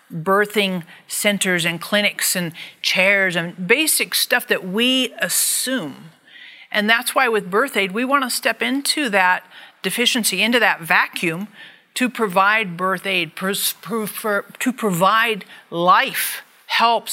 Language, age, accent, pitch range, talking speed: English, 50-69, American, 195-255 Hz, 125 wpm